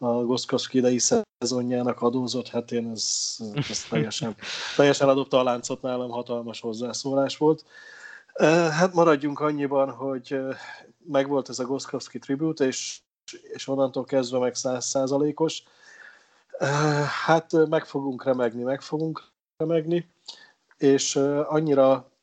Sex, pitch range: male, 125-140 Hz